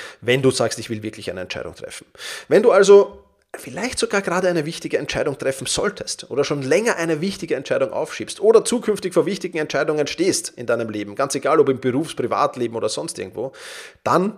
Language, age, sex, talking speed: German, 30-49, male, 190 wpm